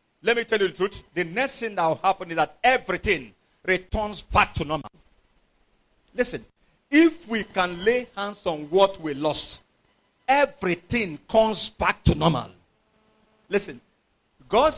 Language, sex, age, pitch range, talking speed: English, male, 50-69, 185-255 Hz, 145 wpm